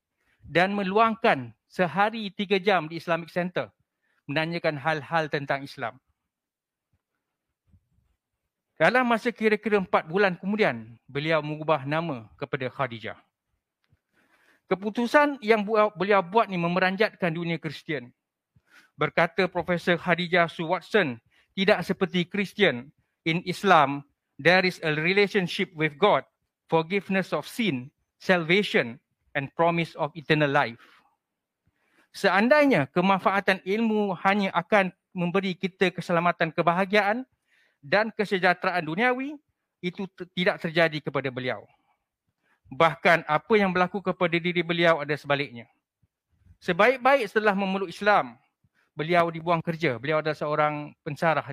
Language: Malay